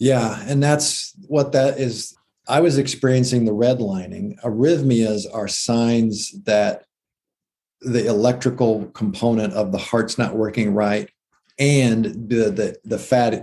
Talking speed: 130 wpm